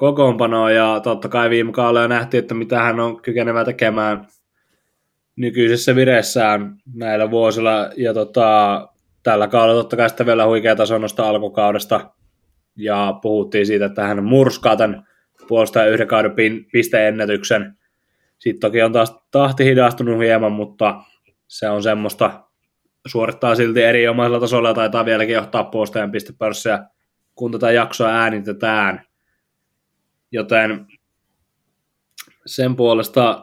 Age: 20-39